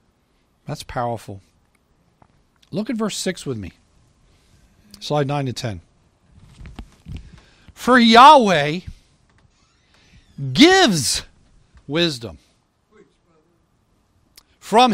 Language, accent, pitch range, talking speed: English, American, 130-195 Hz, 70 wpm